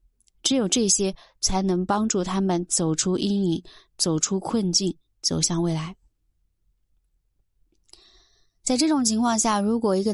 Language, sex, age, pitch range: Chinese, female, 20-39, 170-205 Hz